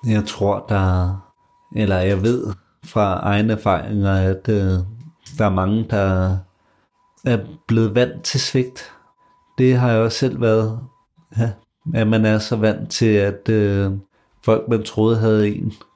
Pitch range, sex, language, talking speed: 100-115 Hz, male, Danish, 150 wpm